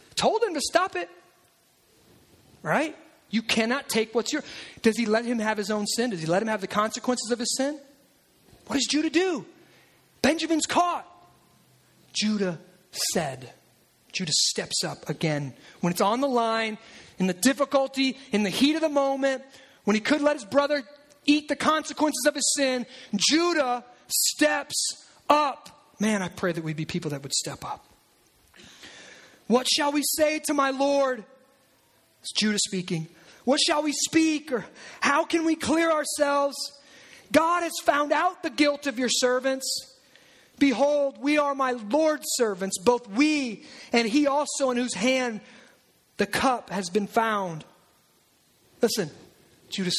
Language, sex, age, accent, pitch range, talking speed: English, male, 30-49, American, 210-290 Hz, 155 wpm